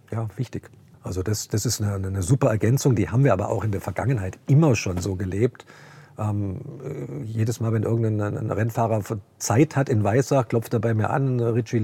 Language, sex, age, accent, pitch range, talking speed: German, male, 50-69, German, 110-135 Hz, 195 wpm